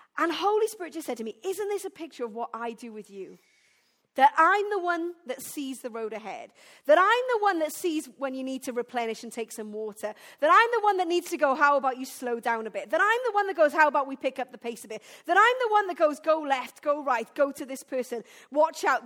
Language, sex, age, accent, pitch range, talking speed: English, female, 40-59, British, 245-340 Hz, 275 wpm